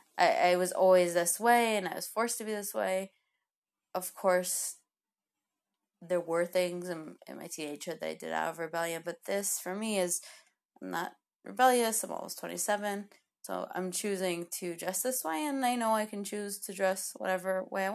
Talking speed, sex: 195 wpm, female